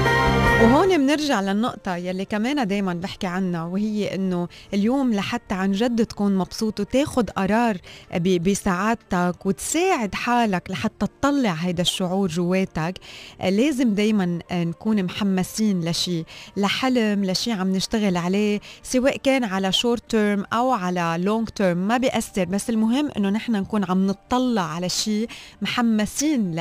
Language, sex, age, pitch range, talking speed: Arabic, female, 20-39, 180-220 Hz, 130 wpm